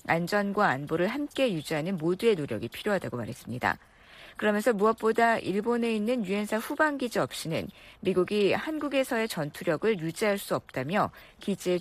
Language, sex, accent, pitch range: Korean, female, native, 170-235 Hz